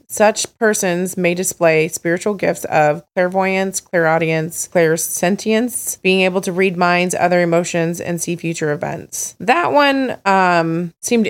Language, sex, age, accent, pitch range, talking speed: English, female, 20-39, American, 165-195 Hz, 135 wpm